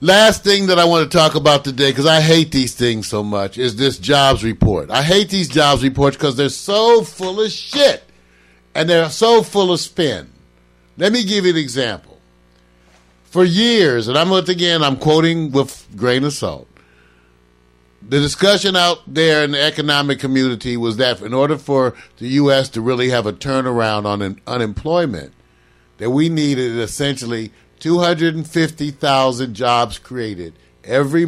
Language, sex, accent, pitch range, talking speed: English, male, American, 105-165 Hz, 160 wpm